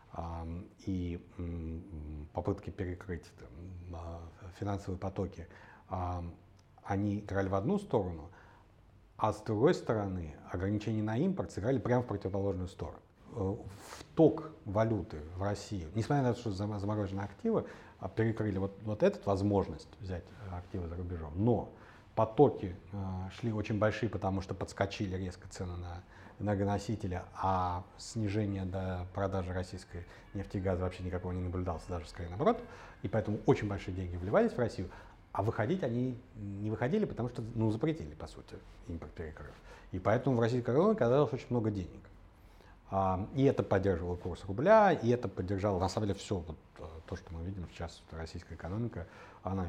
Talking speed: 140 wpm